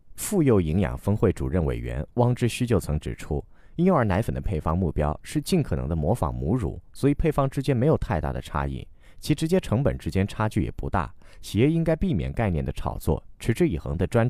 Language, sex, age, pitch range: Chinese, male, 30-49, 80-125 Hz